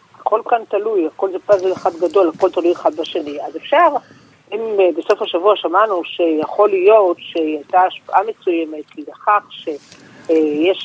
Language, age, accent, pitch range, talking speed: Hebrew, 50-69, native, 165-240 Hz, 145 wpm